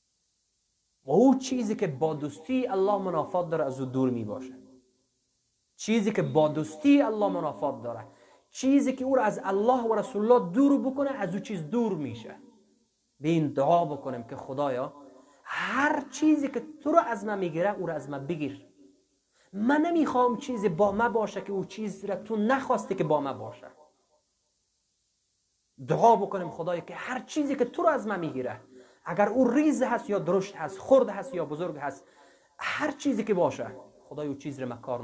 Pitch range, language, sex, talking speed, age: 140-225 Hz, English, male, 175 wpm, 30-49